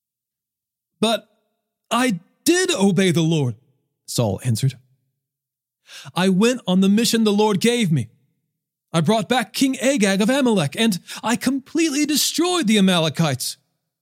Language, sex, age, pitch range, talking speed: English, male, 40-59, 130-205 Hz, 130 wpm